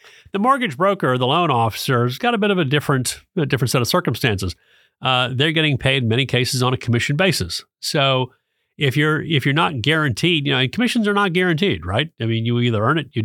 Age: 40-59